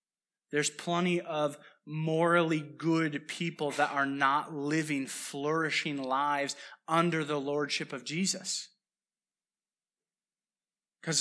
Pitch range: 155-200 Hz